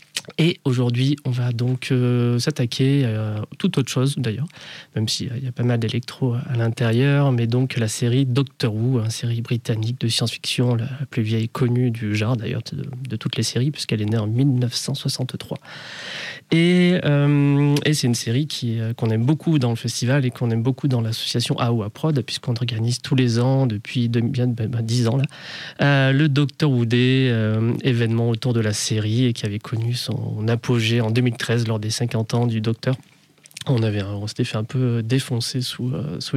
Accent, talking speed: French, 205 wpm